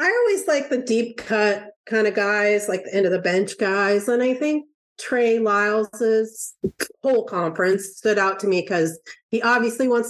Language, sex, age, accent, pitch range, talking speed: English, female, 40-59, American, 190-245 Hz, 185 wpm